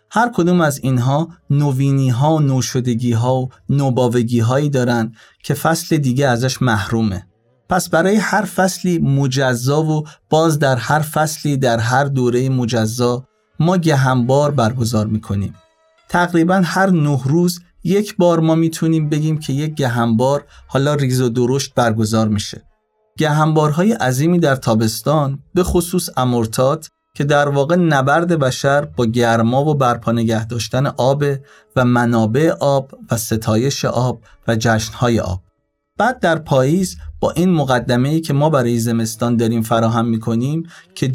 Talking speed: 135 wpm